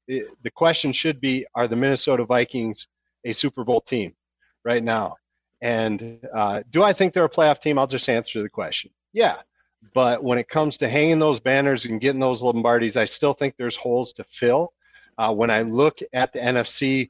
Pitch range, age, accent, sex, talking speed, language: 115-135 Hz, 40-59, American, male, 195 wpm, English